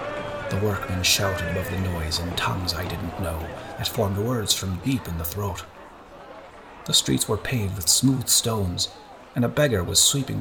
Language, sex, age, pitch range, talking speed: English, male, 30-49, 85-110 Hz, 180 wpm